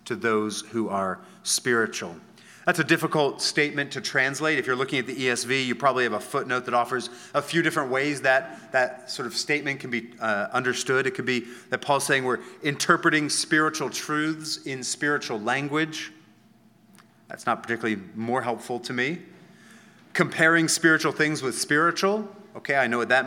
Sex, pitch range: male, 125-155 Hz